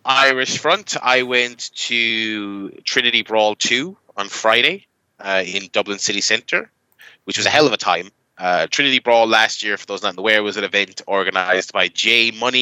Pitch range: 100-125 Hz